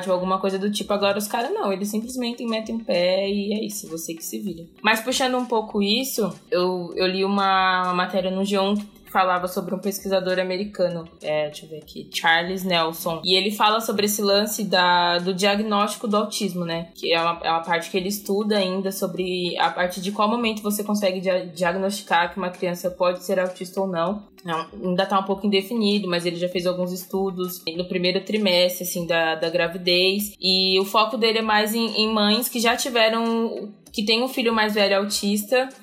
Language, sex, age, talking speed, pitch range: Portuguese, female, 20-39, 200 wpm, 180-210 Hz